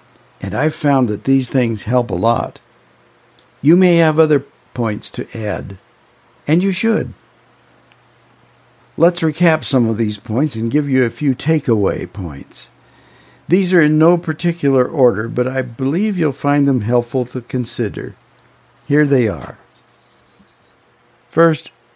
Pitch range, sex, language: 120-145 Hz, male, English